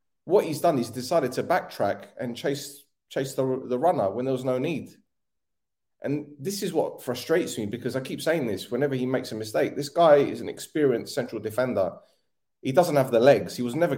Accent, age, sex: British, 30-49, male